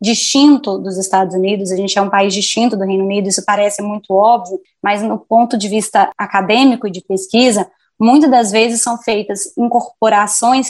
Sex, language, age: female, Portuguese, 20-39